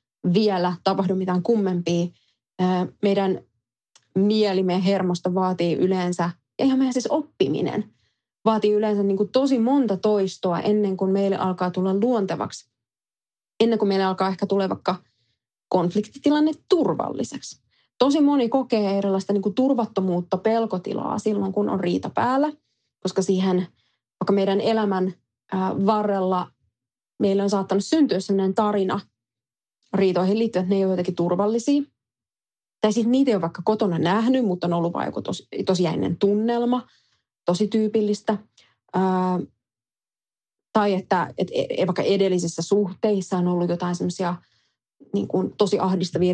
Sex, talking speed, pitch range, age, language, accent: female, 130 wpm, 180-215 Hz, 20-39, Finnish, native